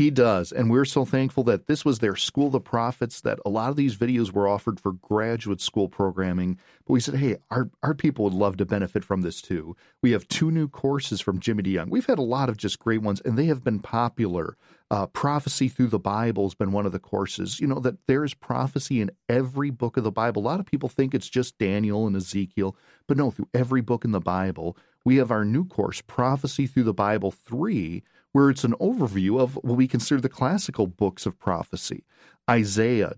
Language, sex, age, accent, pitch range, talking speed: English, male, 40-59, American, 105-130 Hz, 230 wpm